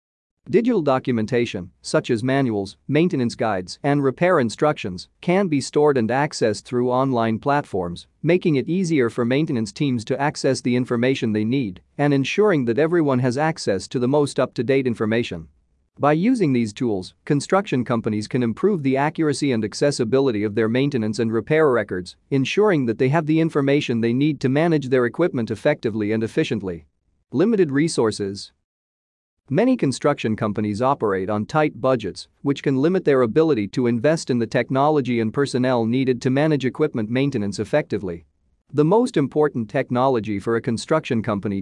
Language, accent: English, American